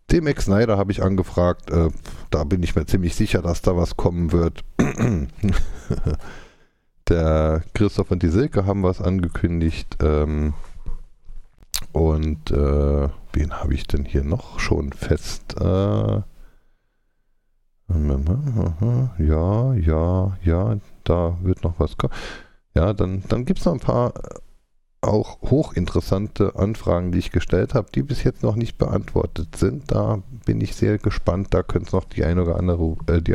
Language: German